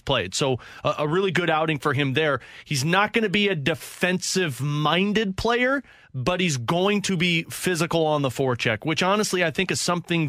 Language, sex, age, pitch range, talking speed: English, male, 30-49, 140-175 Hz, 200 wpm